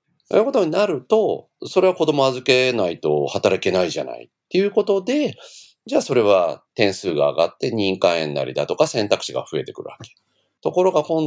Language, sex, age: Japanese, male, 40-59